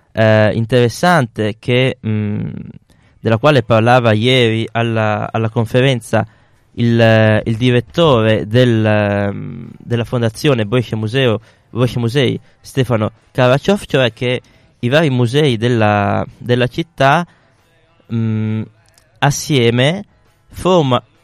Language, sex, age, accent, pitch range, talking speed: Italian, male, 20-39, native, 110-135 Hz, 100 wpm